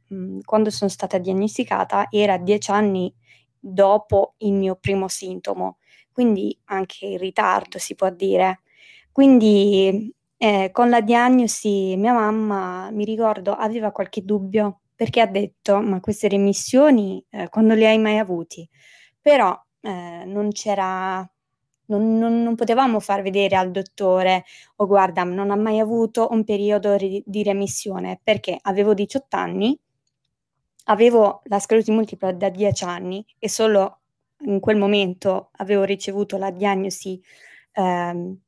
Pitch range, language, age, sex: 190-220 Hz, Italian, 20-39, female